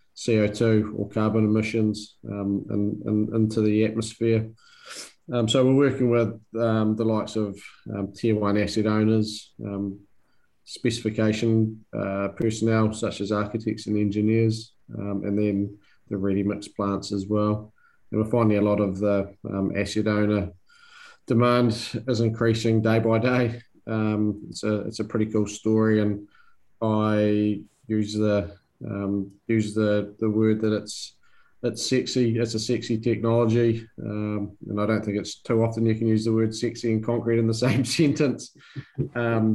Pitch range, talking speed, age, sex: 105-115 Hz, 155 wpm, 20-39, male